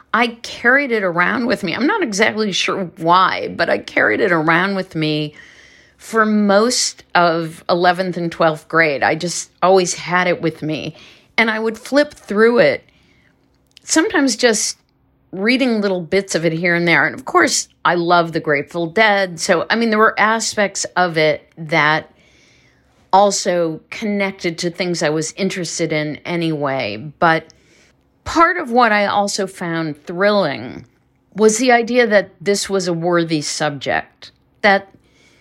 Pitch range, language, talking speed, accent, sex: 165-215 Hz, English, 155 wpm, American, female